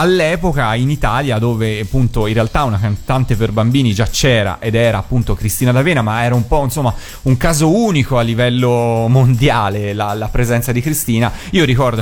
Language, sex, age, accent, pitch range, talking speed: Italian, male, 30-49, native, 110-140 Hz, 180 wpm